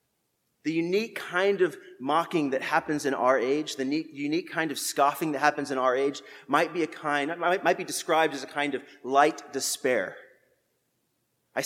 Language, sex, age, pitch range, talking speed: English, male, 30-49, 155-200 Hz, 175 wpm